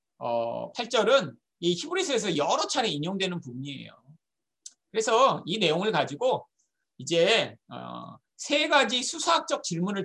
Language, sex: Korean, male